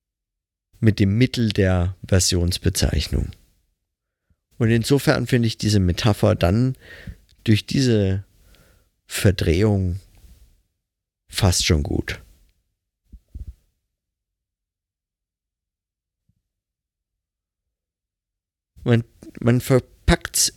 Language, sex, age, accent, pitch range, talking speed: German, male, 50-69, German, 85-110 Hz, 60 wpm